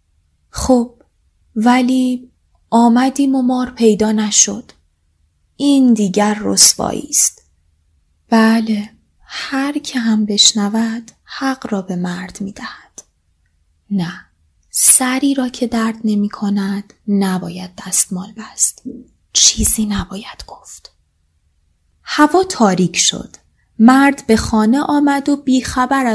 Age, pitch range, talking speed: 20-39, 180-250 Hz, 95 wpm